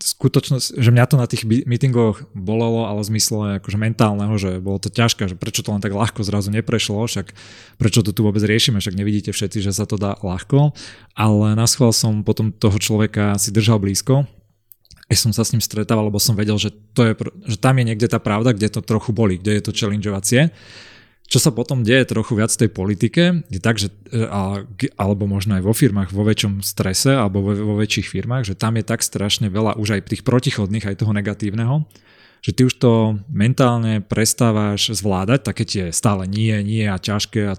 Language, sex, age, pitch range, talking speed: Slovak, male, 20-39, 105-115 Hz, 200 wpm